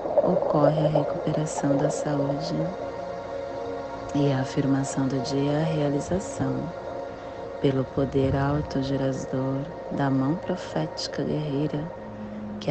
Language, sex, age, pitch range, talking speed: Portuguese, female, 40-59, 135-185 Hz, 100 wpm